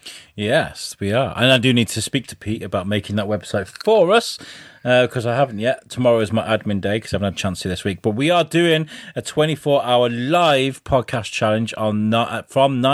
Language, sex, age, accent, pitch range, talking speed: English, male, 30-49, British, 105-125 Hz, 225 wpm